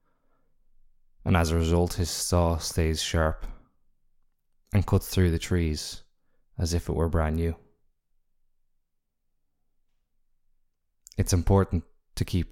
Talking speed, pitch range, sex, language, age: 110 wpm, 80-95 Hz, male, English, 20-39